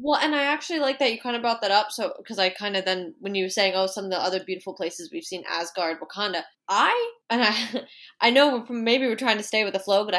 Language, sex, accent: English, female, American